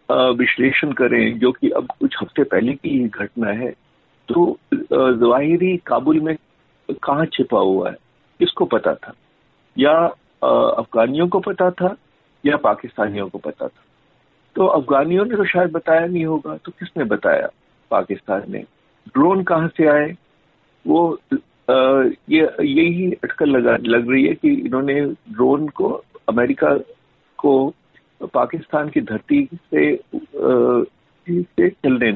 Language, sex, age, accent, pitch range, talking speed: Hindi, male, 50-69, native, 125-190 Hz, 135 wpm